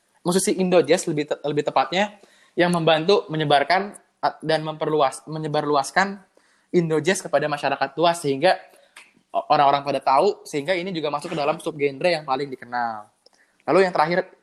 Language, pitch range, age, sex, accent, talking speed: Indonesian, 145-185 Hz, 20-39, male, native, 135 wpm